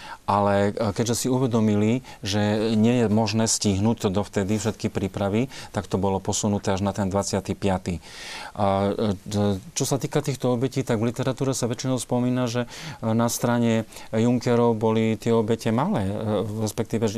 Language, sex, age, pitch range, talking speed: Slovak, male, 30-49, 105-120 Hz, 145 wpm